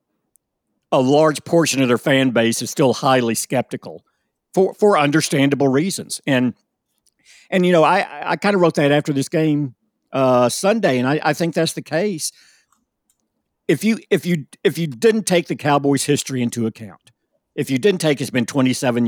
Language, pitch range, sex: English, 120-160 Hz, male